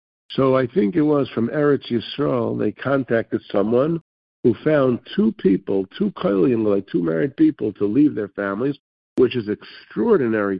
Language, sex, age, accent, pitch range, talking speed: English, male, 50-69, American, 110-150 Hz, 160 wpm